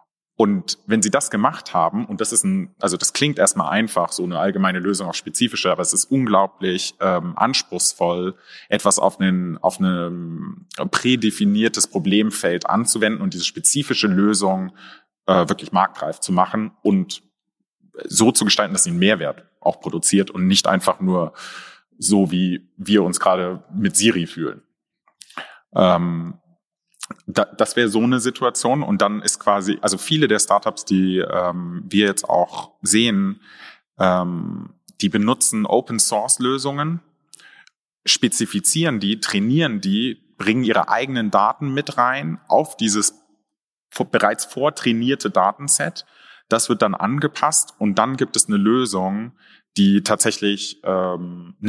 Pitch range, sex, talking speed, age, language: 95-145 Hz, male, 135 wpm, 30-49, German